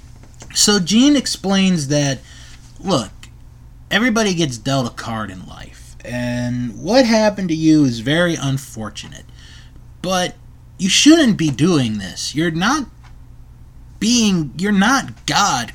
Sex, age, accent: male, 30-49, American